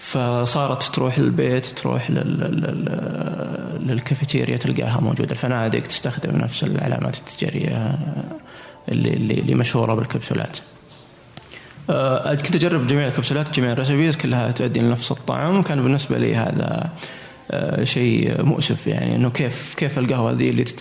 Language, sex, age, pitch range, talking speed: Arabic, male, 20-39, 125-160 Hz, 120 wpm